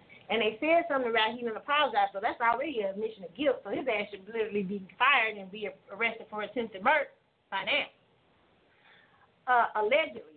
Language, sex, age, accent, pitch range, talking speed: English, female, 30-49, American, 215-265 Hz, 185 wpm